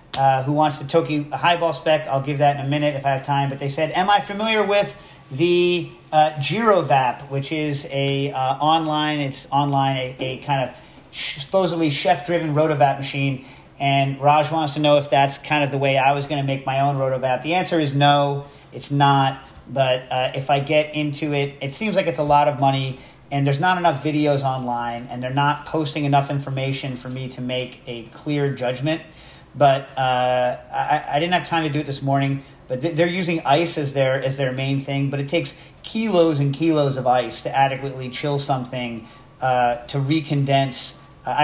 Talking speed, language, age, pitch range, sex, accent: 200 wpm, English, 40-59, 135-150 Hz, male, American